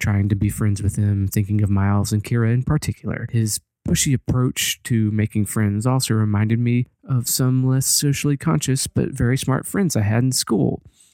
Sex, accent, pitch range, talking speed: male, American, 110-130 Hz, 190 wpm